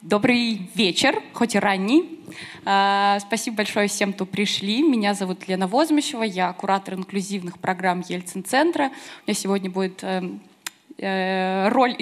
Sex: female